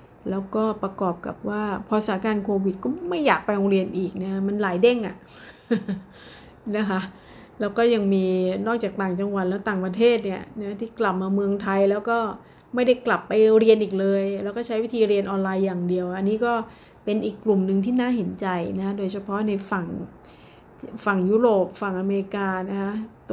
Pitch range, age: 190-230 Hz, 30-49